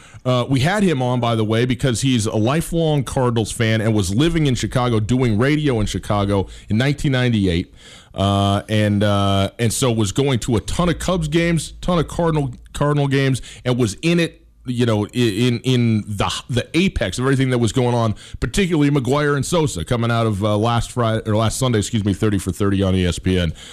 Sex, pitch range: male, 100-130 Hz